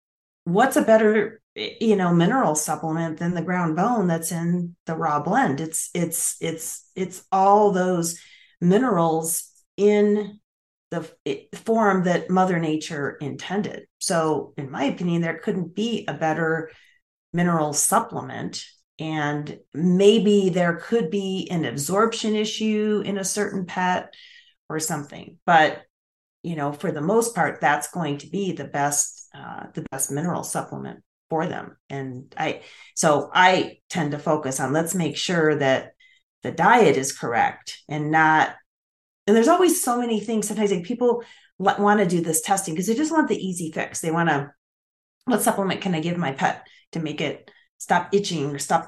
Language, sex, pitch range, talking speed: English, female, 155-205 Hz, 160 wpm